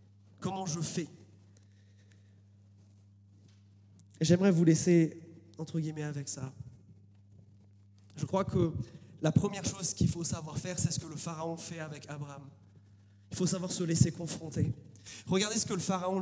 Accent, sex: French, male